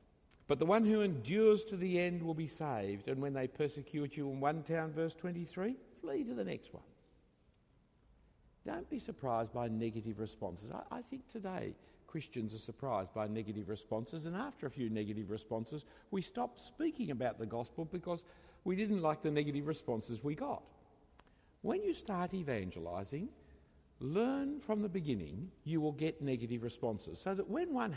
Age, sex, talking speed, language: 60-79, male, 170 wpm, English